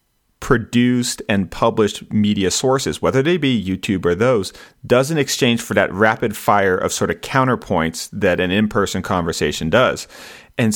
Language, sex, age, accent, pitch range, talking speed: English, male, 40-59, American, 95-120 Hz, 155 wpm